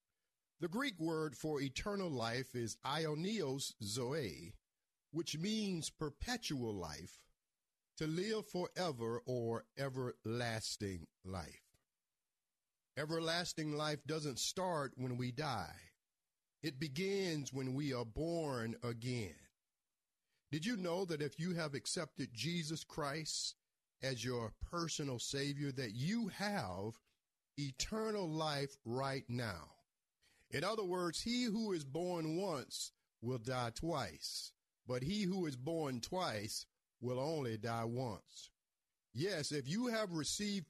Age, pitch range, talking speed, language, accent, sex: 50-69, 125-175 Hz, 120 wpm, English, American, male